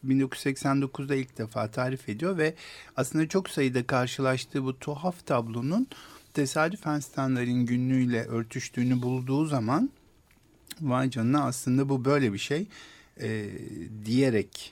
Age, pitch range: 50-69, 110-140 Hz